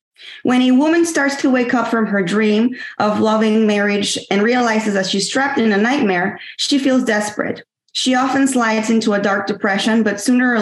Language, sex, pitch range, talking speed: English, female, 200-240 Hz, 190 wpm